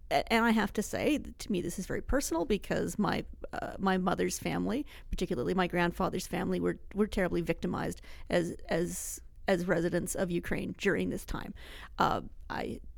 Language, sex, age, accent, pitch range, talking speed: English, female, 40-59, American, 190-260 Hz, 165 wpm